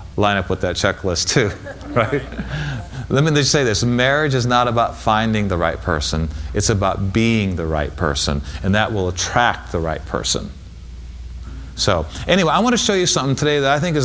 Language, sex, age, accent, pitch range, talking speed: English, male, 40-59, American, 85-140 Hz, 195 wpm